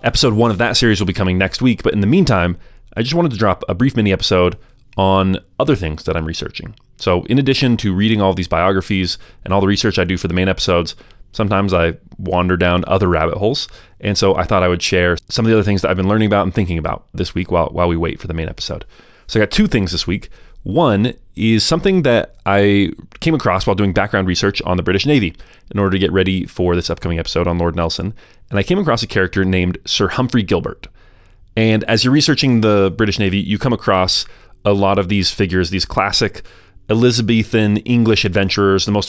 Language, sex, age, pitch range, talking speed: English, male, 30-49, 95-110 Hz, 230 wpm